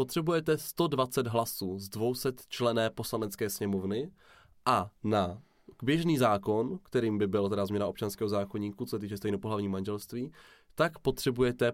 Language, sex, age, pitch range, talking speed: Czech, male, 20-39, 105-135 Hz, 130 wpm